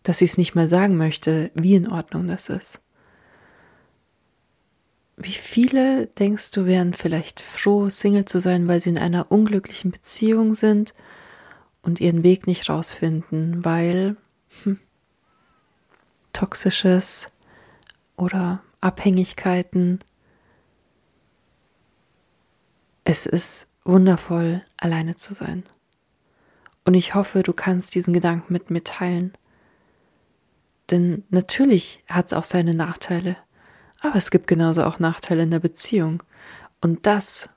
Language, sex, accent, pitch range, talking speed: German, female, German, 175-200 Hz, 115 wpm